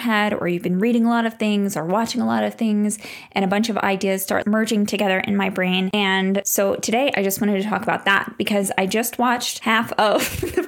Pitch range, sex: 195-225 Hz, female